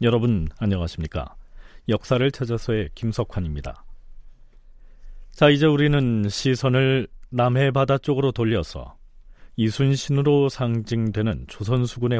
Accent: native